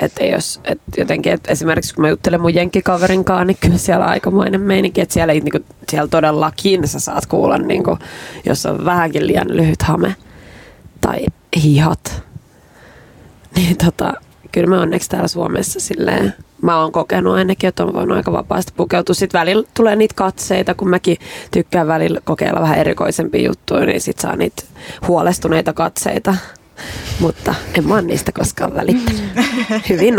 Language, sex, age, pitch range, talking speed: Finnish, female, 20-39, 155-190 Hz, 155 wpm